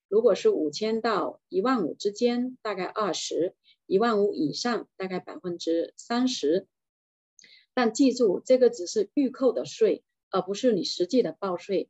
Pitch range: 190-265 Hz